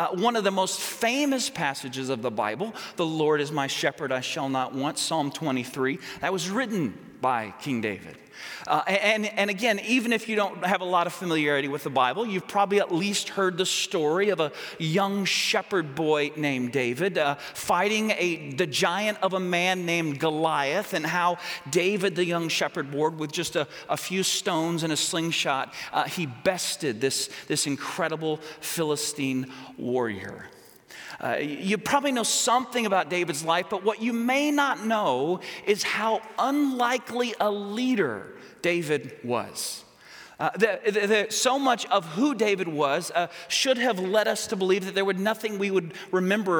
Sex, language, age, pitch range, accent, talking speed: male, English, 40-59, 155-210 Hz, American, 175 wpm